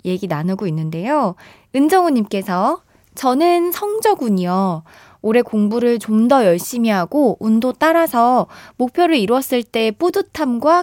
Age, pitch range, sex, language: 20-39, 190-295 Hz, female, Korean